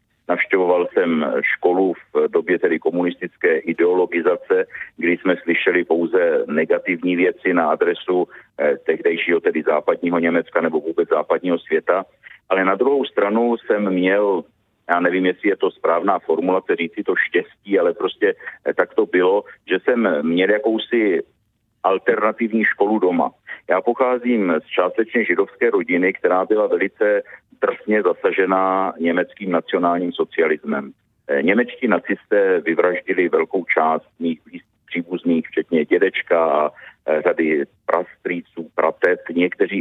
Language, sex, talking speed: Czech, male, 120 wpm